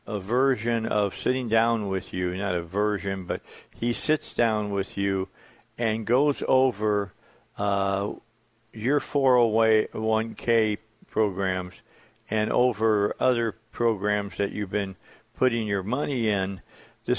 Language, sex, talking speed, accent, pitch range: English, male, 120 wpm, American, 105-125 Hz